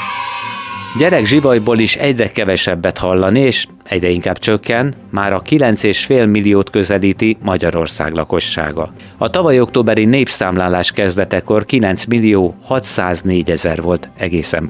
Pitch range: 95-120 Hz